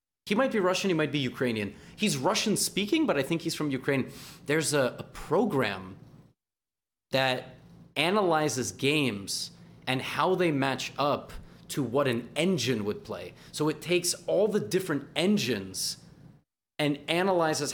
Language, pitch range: English, 125-170 Hz